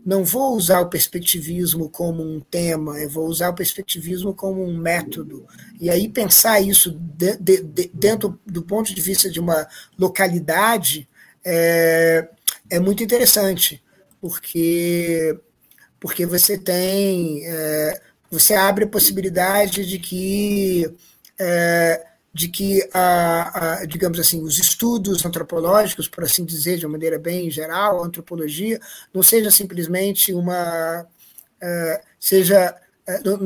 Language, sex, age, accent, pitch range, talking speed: Portuguese, male, 20-39, Brazilian, 165-195 Hz, 125 wpm